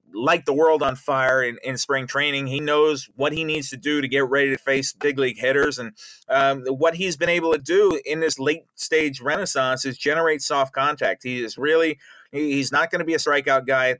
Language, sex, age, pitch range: English, male, 30-49, 135-160 Hz